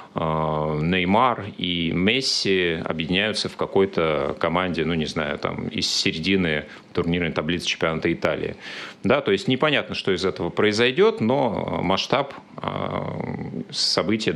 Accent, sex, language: native, male, Russian